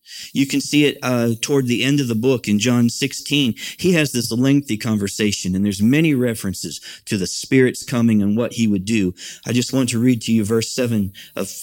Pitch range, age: 120-165 Hz, 50-69